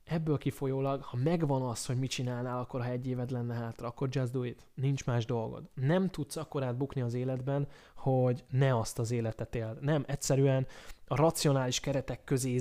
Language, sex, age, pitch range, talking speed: Hungarian, male, 20-39, 120-145 Hz, 185 wpm